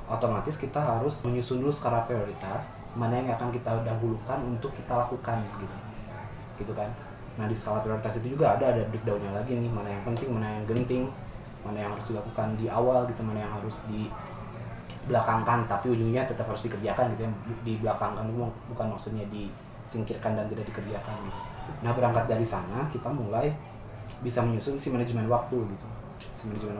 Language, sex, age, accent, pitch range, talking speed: Indonesian, male, 20-39, native, 105-120 Hz, 170 wpm